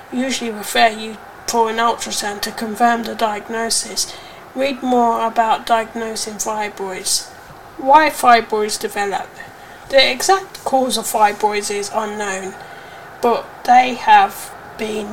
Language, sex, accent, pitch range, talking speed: English, female, British, 220-285 Hz, 115 wpm